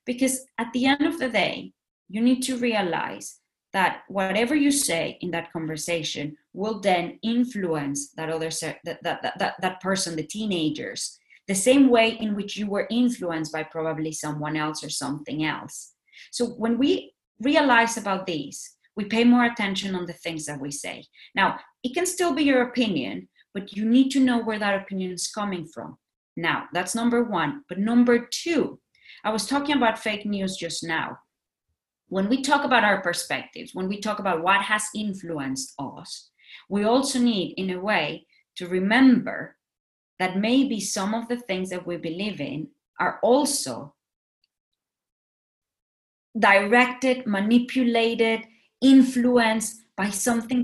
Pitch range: 180-245 Hz